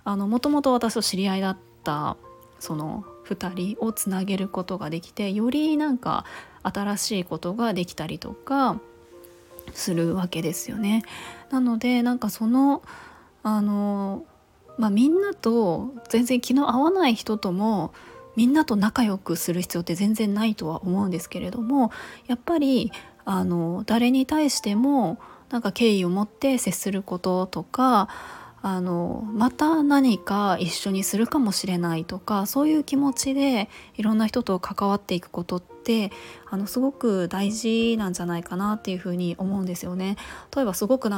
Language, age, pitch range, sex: Japanese, 20-39, 185-245 Hz, female